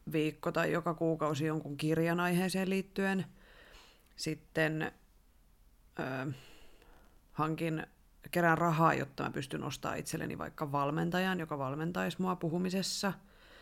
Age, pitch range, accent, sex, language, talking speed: 30-49, 140-175 Hz, native, female, Finnish, 105 wpm